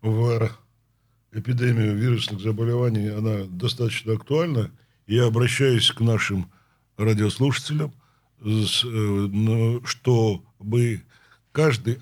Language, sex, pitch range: Russian, male, 115-130 Hz